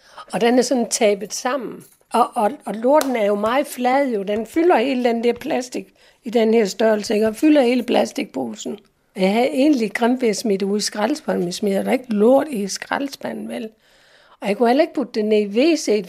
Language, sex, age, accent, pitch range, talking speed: Danish, female, 60-79, native, 210-255 Hz, 190 wpm